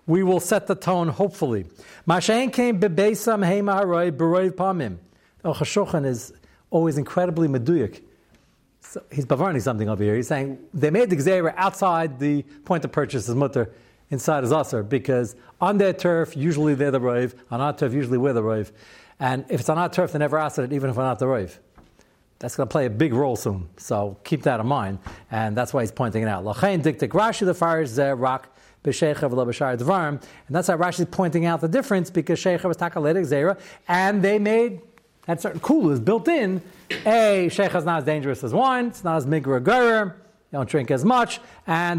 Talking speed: 195 wpm